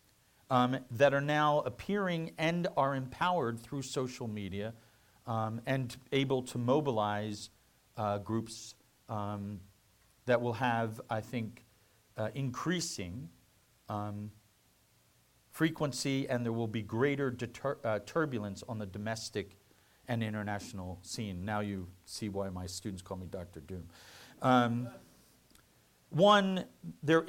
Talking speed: 115 wpm